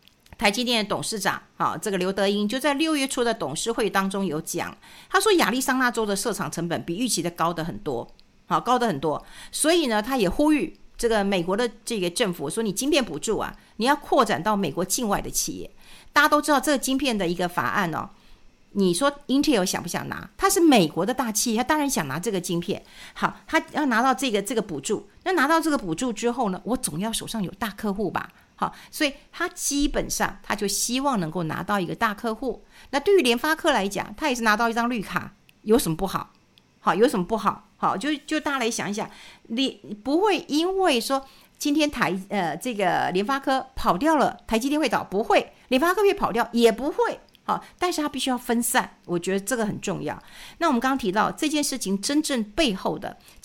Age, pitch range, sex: 50-69, 195-285 Hz, female